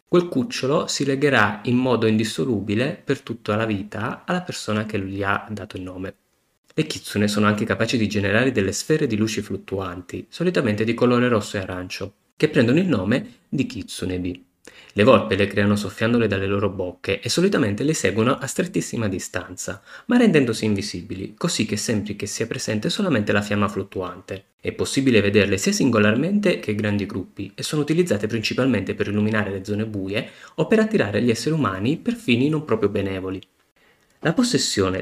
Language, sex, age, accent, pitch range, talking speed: Italian, male, 30-49, native, 100-145 Hz, 175 wpm